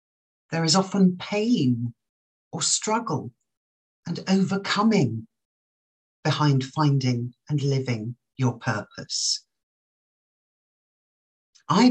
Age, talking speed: 50-69, 75 wpm